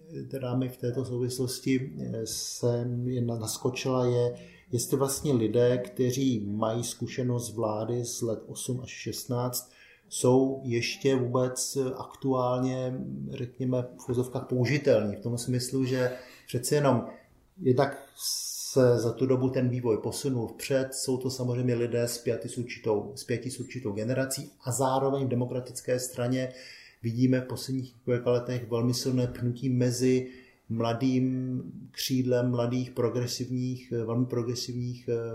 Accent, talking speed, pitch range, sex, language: native, 125 wpm, 115-130 Hz, male, Czech